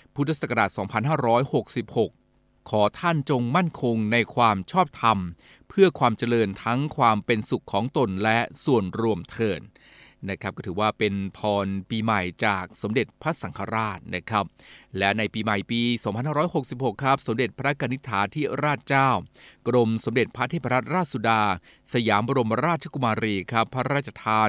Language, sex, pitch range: Thai, male, 105-130 Hz